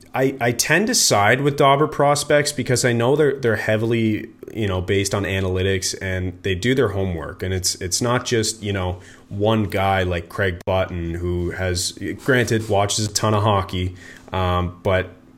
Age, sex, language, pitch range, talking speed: 30-49, male, English, 95-120 Hz, 180 wpm